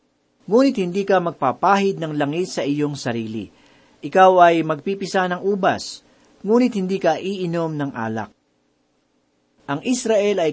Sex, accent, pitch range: male, native, 140-195 Hz